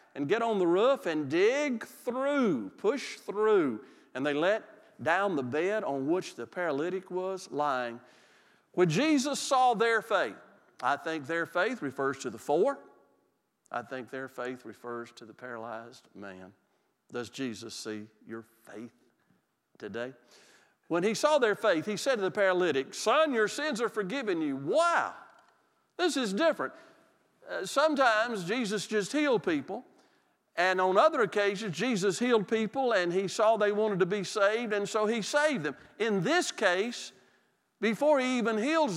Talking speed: 155 wpm